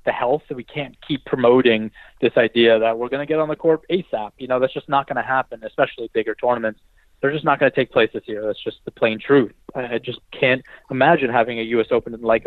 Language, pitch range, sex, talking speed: English, 115-130 Hz, male, 255 wpm